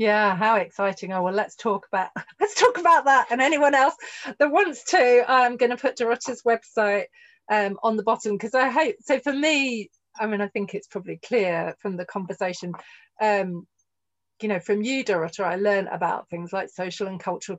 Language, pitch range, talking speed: English, 185-235 Hz, 200 wpm